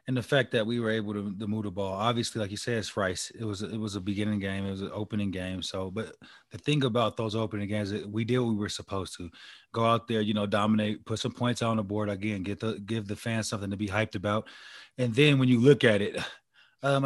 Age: 20-39